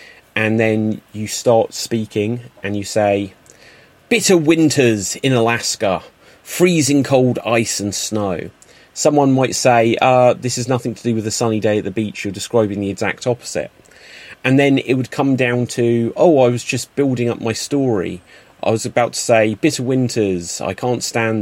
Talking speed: 175 wpm